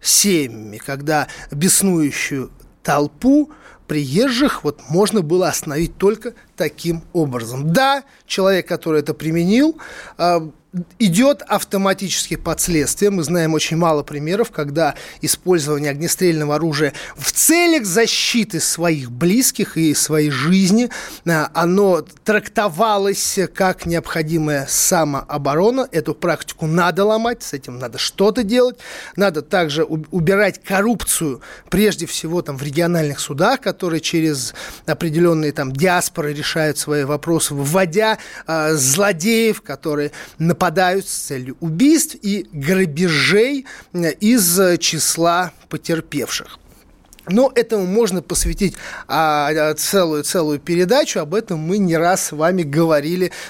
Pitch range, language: 155-205 Hz, Russian